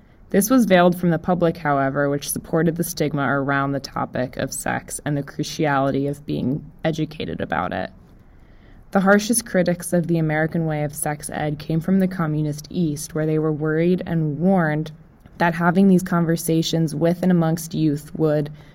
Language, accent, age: English, American, 20-39